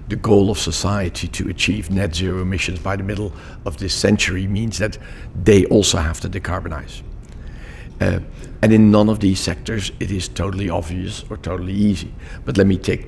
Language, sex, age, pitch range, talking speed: English, male, 60-79, 90-105 Hz, 185 wpm